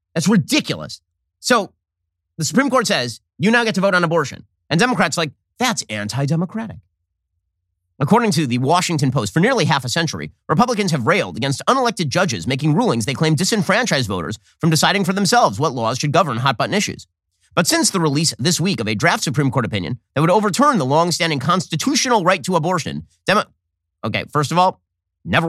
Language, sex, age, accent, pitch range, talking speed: English, male, 30-49, American, 125-185 Hz, 190 wpm